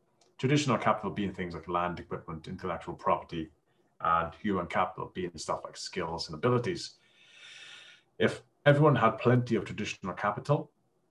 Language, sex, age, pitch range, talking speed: English, male, 30-49, 95-125 Hz, 135 wpm